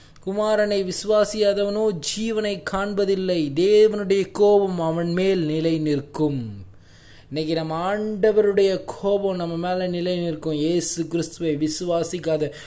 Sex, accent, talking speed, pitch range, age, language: male, native, 100 wpm, 140-185 Hz, 20-39, Tamil